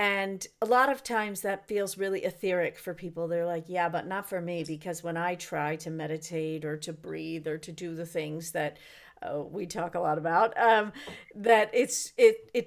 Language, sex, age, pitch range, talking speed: English, female, 50-69, 180-230 Hz, 210 wpm